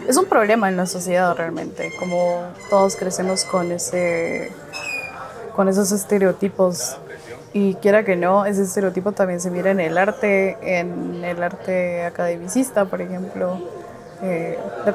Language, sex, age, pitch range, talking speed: Spanish, female, 10-29, 185-215 Hz, 140 wpm